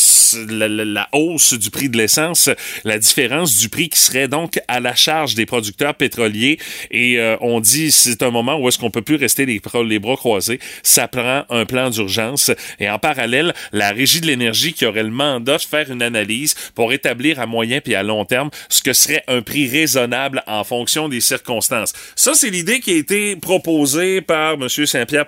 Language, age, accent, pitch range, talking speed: French, 30-49, Canadian, 115-145 Hz, 205 wpm